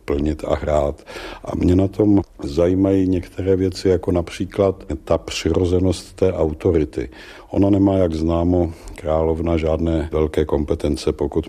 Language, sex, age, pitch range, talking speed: Czech, male, 50-69, 80-90 Hz, 130 wpm